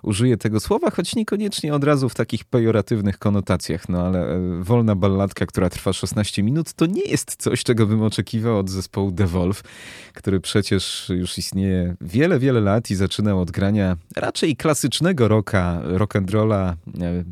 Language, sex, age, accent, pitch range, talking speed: Polish, male, 30-49, native, 95-120 Hz, 155 wpm